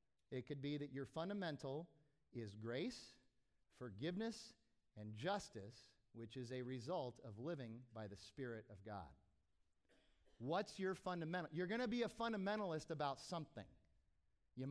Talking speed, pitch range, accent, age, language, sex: 140 wpm, 120-175 Hz, American, 40-59, English, male